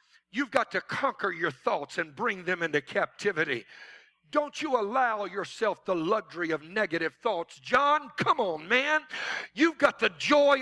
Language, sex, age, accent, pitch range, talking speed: English, male, 50-69, American, 165-280 Hz, 160 wpm